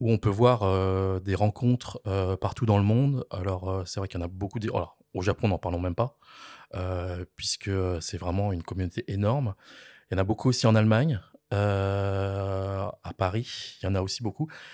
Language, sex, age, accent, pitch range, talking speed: French, male, 20-39, French, 100-125 Hz, 220 wpm